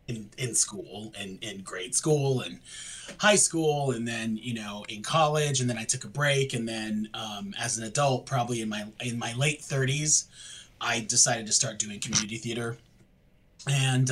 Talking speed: 185 wpm